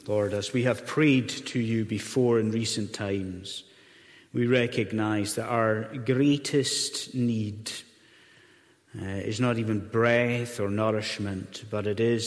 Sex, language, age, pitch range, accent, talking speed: male, English, 30-49, 115-135 Hz, British, 130 wpm